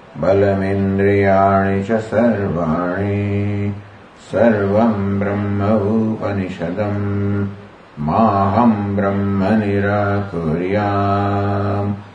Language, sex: English, male